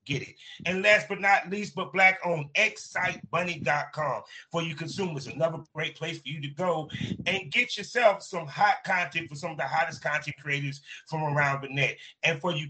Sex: male